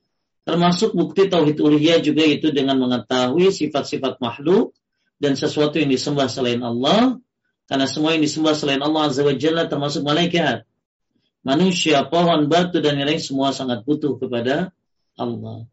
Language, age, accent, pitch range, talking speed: Indonesian, 40-59, native, 135-170 Hz, 140 wpm